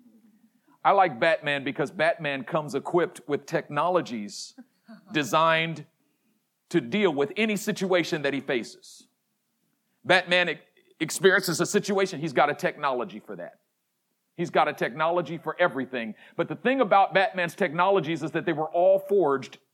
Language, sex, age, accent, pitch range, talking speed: English, male, 40-59, American, 190-285 Hz, 140 wpm